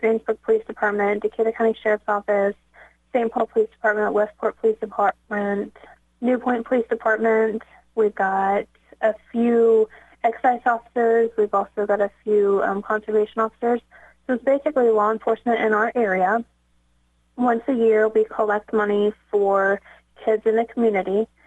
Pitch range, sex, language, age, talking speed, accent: 205-230 Hz, female, English, 20-39, 145 wpm, American